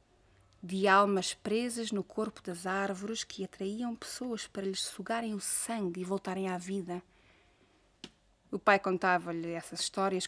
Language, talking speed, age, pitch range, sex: Portuguese, 140 wpm, 20-39, 180-220 Hz, female